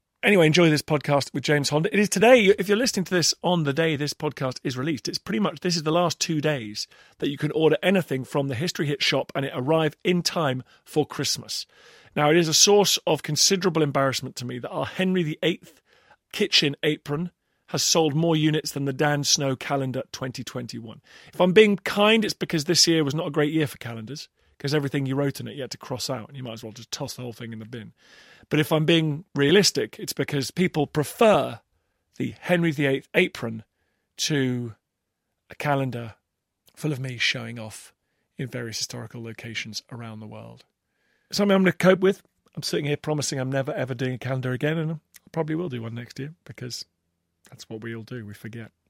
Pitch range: 125-165 Hz